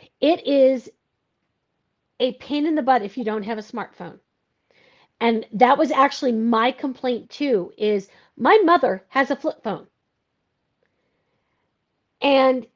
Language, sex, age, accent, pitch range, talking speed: English, female, 50-69, American, 220-275 Hz, 130 wpm